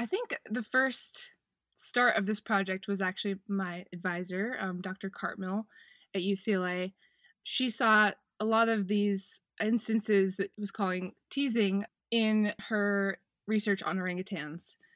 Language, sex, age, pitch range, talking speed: English, female, 20-39, 185-220 Hz, 130 wpm